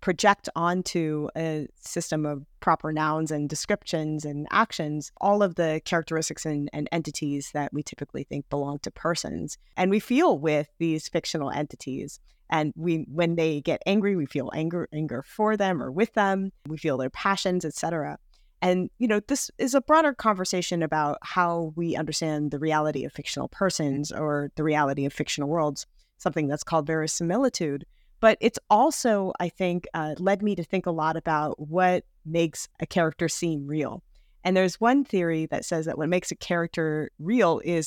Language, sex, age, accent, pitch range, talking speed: English, female, 30-49, American, 150-180 Hz, 175 wpm